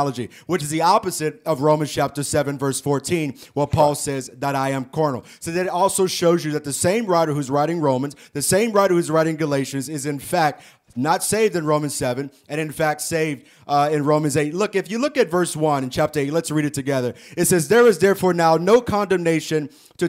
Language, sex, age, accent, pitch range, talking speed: English, male, 30-49, American, 145-170 Hz, 220 wpm